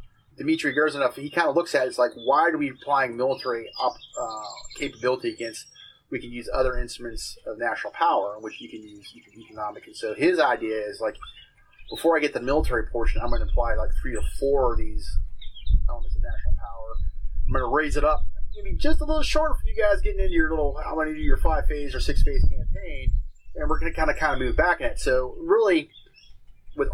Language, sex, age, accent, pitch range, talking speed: English, male, 30-49, American, 110-160 Hz, 235 wpm